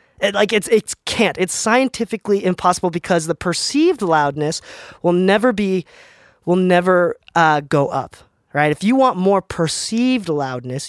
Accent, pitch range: American, 155-195 Hz